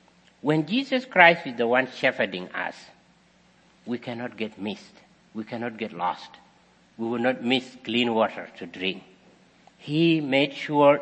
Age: 60-79